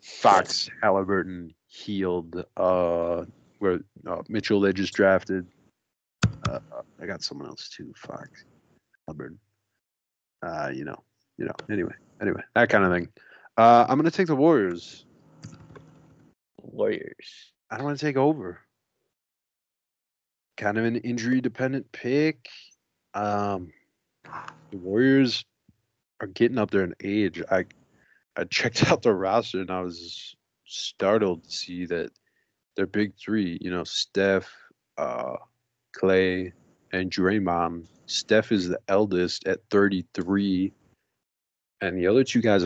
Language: English